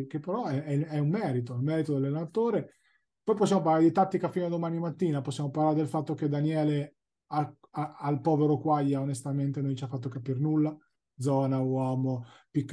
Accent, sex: native, male